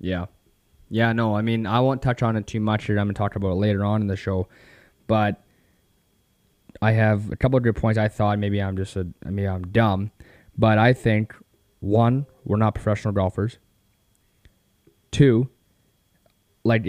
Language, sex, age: English, male, 20-39